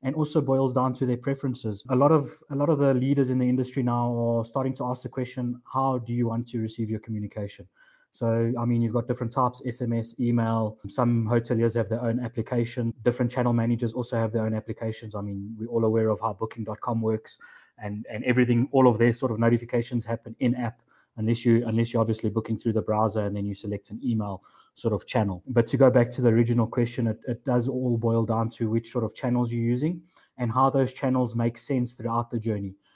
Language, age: English, 20-39